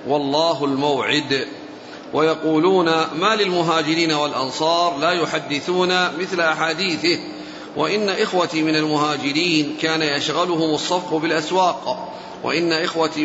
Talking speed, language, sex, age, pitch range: 90 wpm, Arabic, male, 40-59, 150-180 Hz